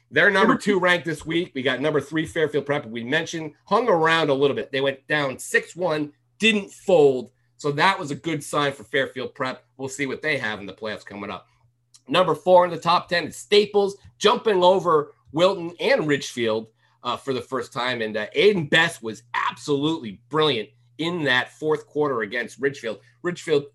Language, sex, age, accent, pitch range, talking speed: English, male, 40-59, American, 120-155 Hz, 190 wpm